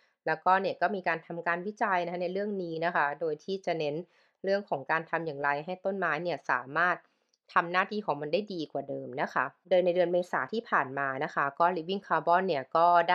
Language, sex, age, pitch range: Thai, female, 20-39, 150-190 Hz